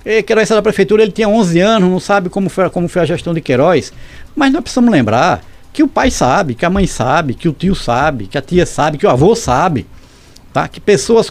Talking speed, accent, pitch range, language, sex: 230 wpm, Brazilian, 125-195 Hz, Portuguese, male